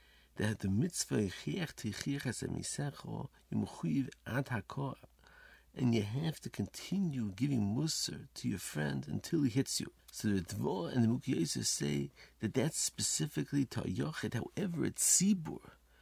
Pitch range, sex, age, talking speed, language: 95-135 Hz, male, 50-69, 120 wpm, English